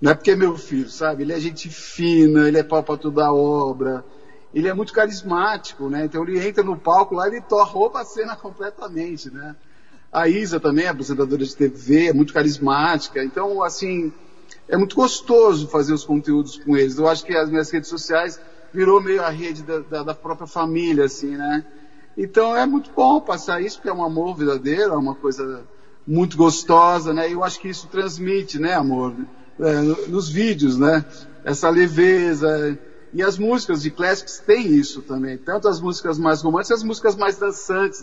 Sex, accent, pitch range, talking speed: male, Brazilian, 155-195 Hz, 190 wpm